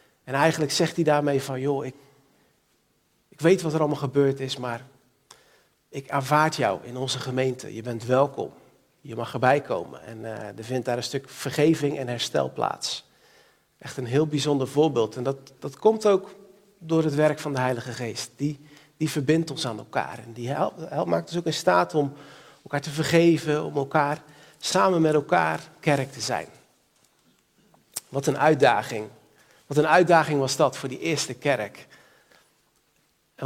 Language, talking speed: Dutch, 175 wpm